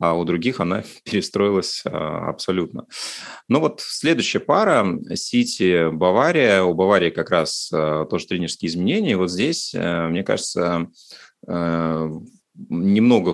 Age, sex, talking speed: 30-49, male, 110 wpm